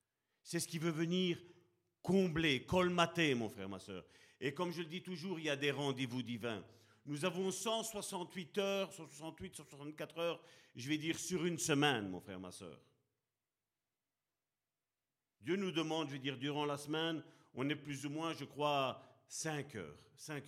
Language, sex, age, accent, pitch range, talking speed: French, male, 50-69, French, 125-175 Hz, 175 wpm